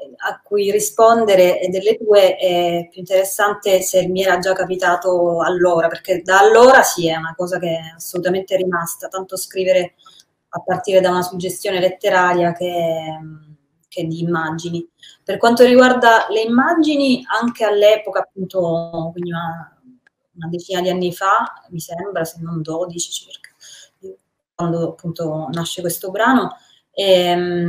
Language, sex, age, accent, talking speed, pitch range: Italian, female, 20-39, native, 140 wpm, 170-190 Hz